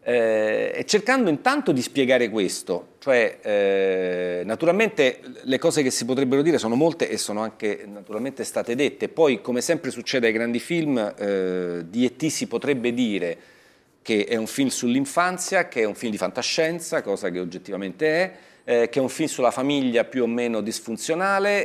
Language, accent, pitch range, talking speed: Italian, native, 115-160 Hz, 170 wpm